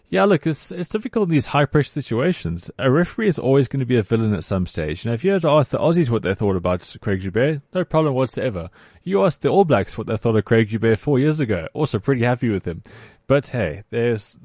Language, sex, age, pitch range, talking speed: English, male, 20-39, 100-140 Hz, 250 wpm